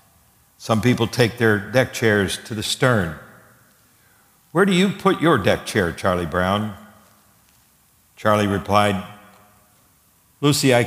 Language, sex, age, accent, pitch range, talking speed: English, male, 60-79, American, 95-110 Hz, 120 wpm